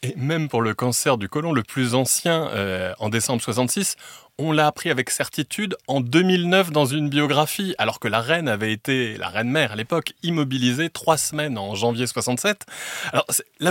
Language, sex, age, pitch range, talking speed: French, male, 30-49, 110-150 Hz, 185 wpm